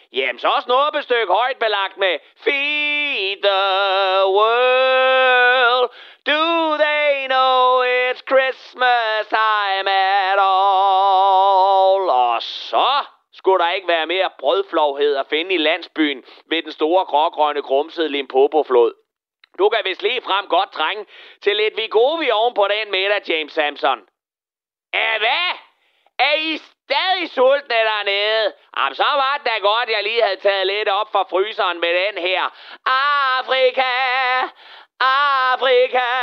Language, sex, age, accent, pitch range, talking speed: Danish, male, 30-49, native, 190-300 Hz, 130 wpm